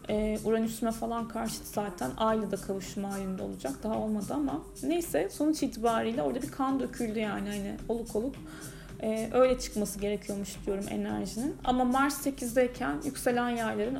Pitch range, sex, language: 205-245 Hz, female, Turkish